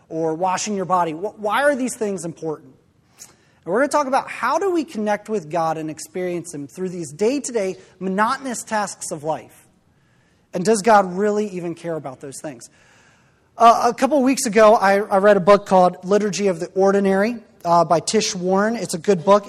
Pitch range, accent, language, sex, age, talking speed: 180-235 Hz, American, English, male, 30-49, 195 wpm